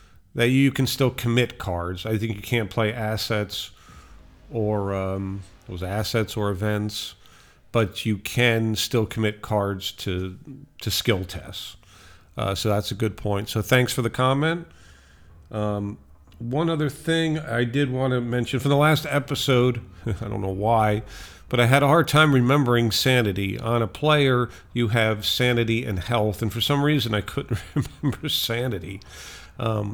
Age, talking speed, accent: 50-69, 160 wpm, American